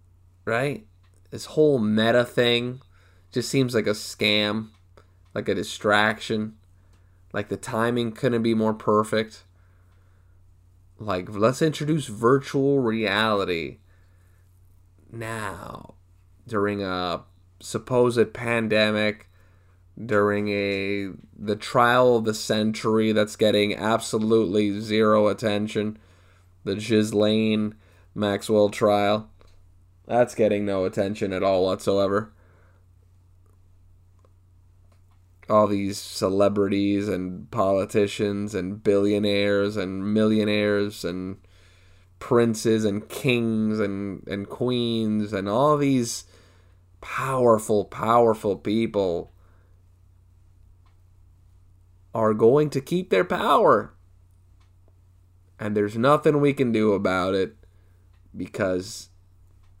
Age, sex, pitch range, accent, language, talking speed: 20-39, male, 90-110 Hz, American, English, 90 wpm